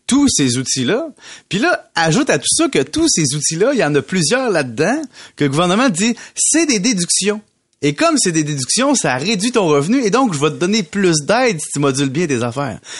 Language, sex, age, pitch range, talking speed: French, male, 30-49, 140-210 Hz, 225 wpm